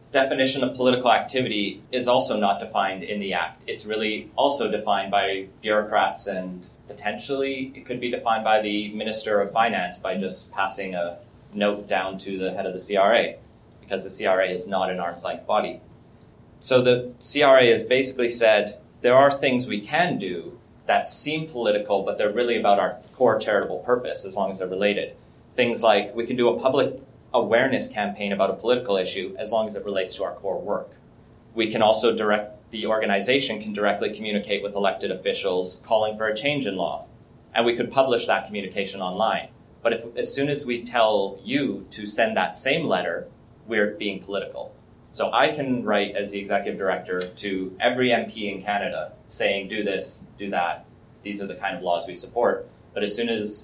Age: 30-49